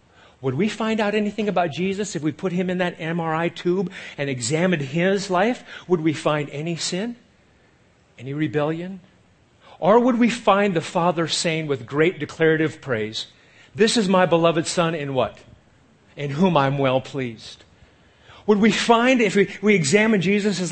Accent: American